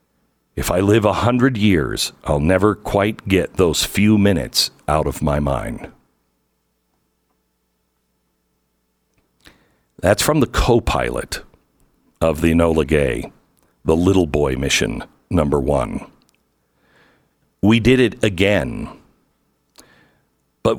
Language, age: English, 60-79